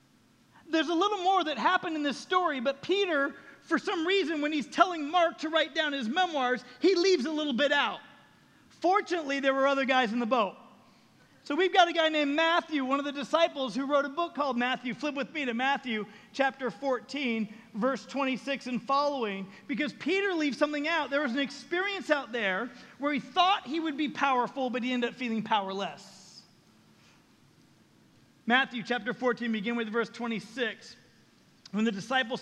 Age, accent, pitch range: 40-59, American, 240-310 Hz